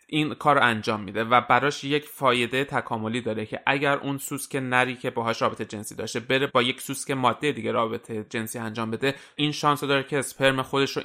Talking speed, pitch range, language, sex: 205 wpm, 110-130 Hz, Persian, male